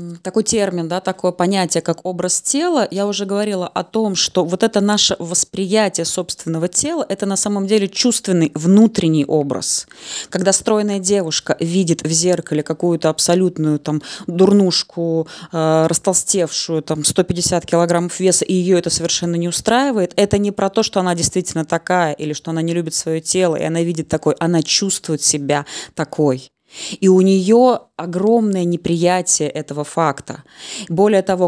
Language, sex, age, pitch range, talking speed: Russian, female, 20-39, 165-190 Hz, 155 wpm